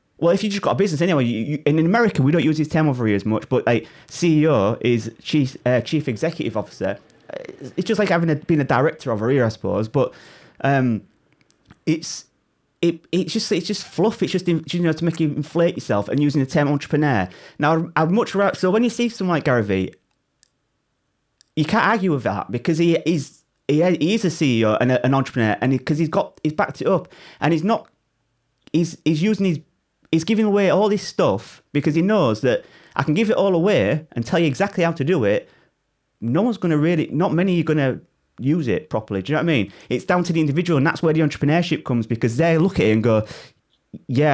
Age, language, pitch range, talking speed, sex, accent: 20-39, English, 130-170 Hz, 235 wpm, male, British